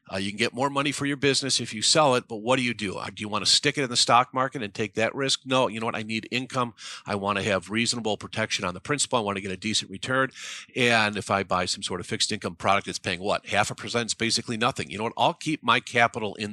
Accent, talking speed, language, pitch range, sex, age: American, 300 wpm, English, 100-130 Hz, male, 50-69